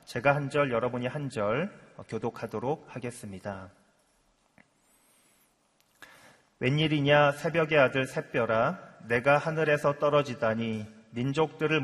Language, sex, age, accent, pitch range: Korean, male, 30-49, native, 115-145 Hz